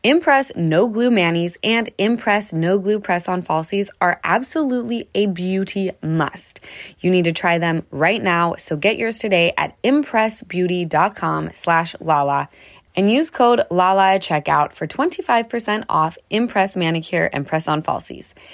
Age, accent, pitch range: 20-39, American, 160-215 Hz